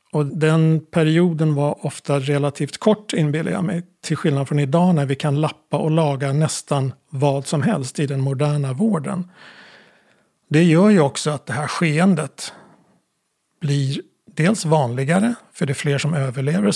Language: Swedish